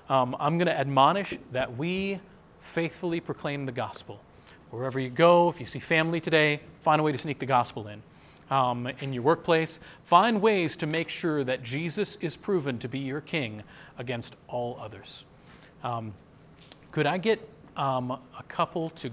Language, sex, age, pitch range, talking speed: English, male, 40-59, 130-175 Hz, 175 wpm